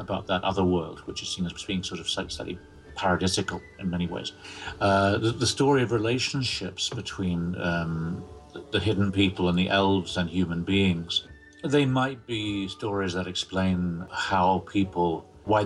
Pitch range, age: 85-105 Hz, 50-69